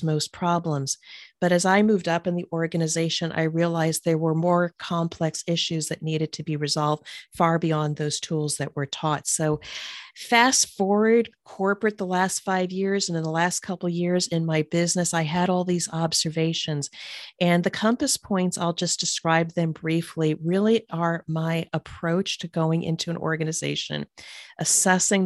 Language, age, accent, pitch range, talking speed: English, 40-59, American, 160-180 Hz, 170 wpm